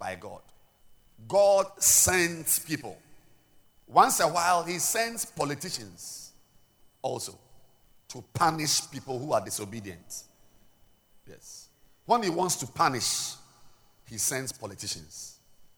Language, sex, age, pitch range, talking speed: English, male, 50-69, 110-155 Hz, 105 wpm